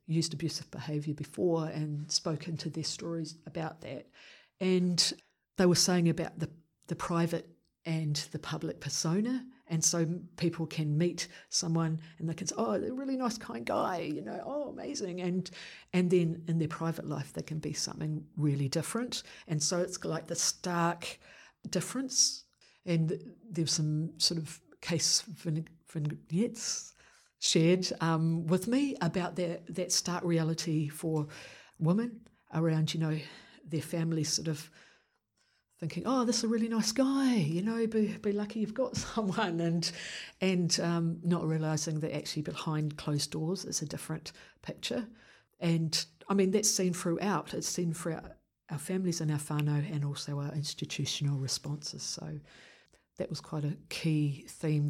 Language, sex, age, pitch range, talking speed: English, female, 50-69, 155-185 Hz, 160 wpm